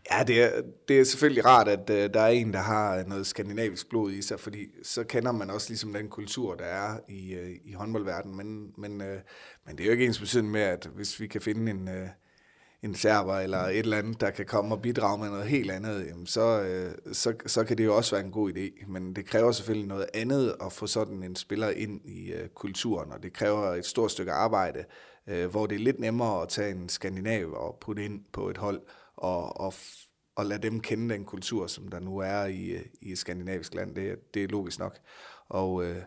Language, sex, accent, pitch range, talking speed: Danish, male, native, 95-110 Hz, 235 wpm